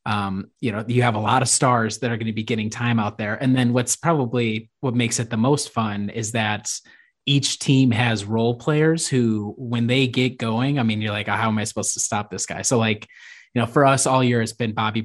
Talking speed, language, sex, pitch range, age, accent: 255 wpm, English, male, 110-125 Hz, 20-39, American